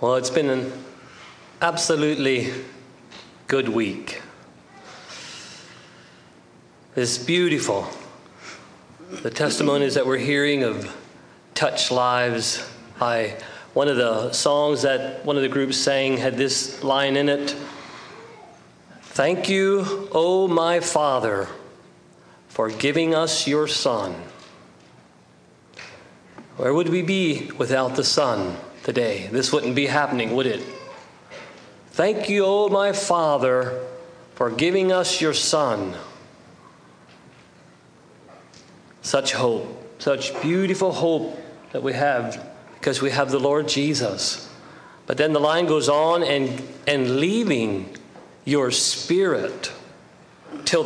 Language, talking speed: English, 110 wpm